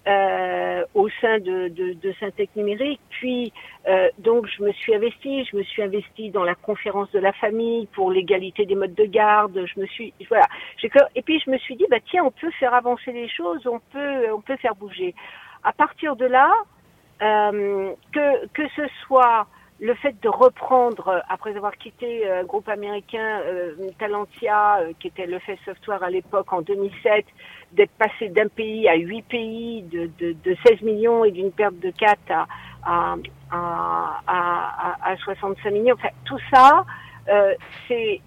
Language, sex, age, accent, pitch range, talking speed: French, female, 50-69, French, 200-270 Hz, 180 wpm